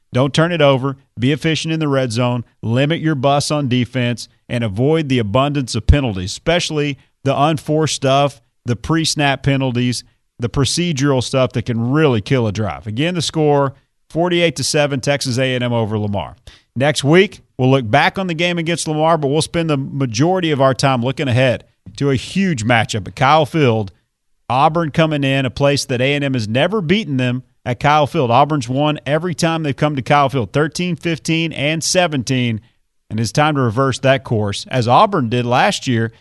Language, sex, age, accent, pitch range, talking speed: English, male, 40-59, American, 120-150 Hz, 185 wpm